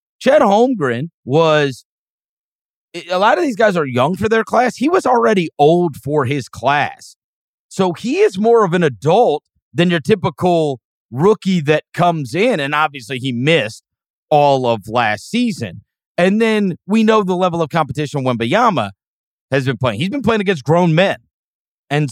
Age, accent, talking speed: 40-59, American, 170 wpm